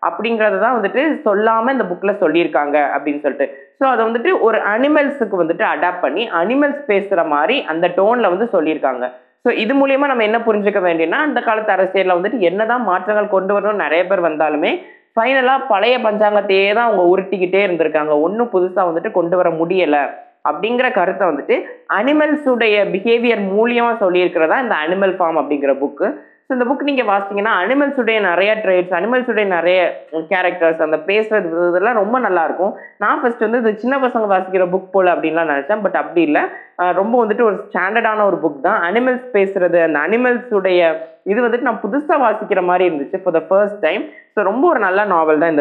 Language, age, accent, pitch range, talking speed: Tamil, 20-39, native, 170-235 Hz, 135 wpm